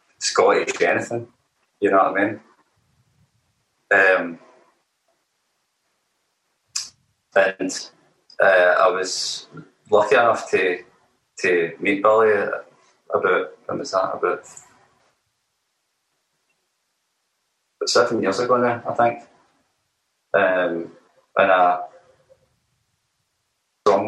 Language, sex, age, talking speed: English, male, 30-49, 80 wpm